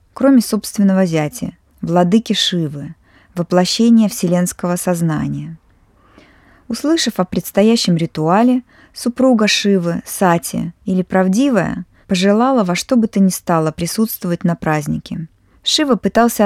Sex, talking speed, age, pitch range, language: female, 105 wpm, 20-39, 160-210 Hz, Russian